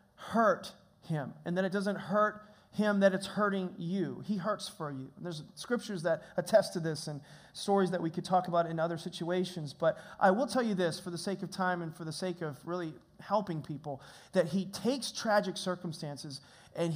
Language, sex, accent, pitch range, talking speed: English, male, American, 175-215 Hz, 205 wpm